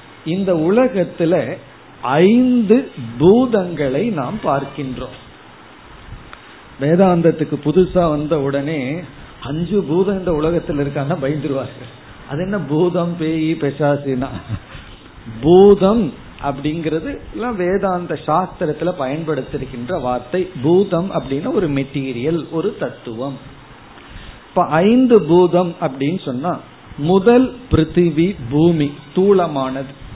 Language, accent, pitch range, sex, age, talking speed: Tamil, native, 140-180 Hz, male, 50-69, 70 wpm